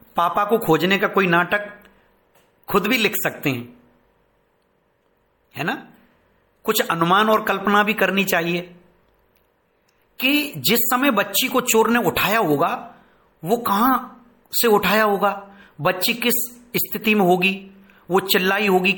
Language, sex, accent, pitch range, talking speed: Hindi, male, native, 170-215 Hz, 135 wpm